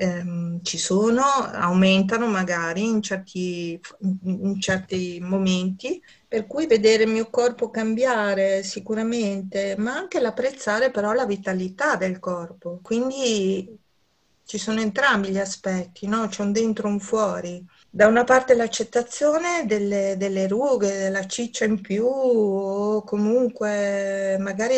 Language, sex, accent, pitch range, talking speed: Italian, female, native, 185-220 Hz, 120 wpm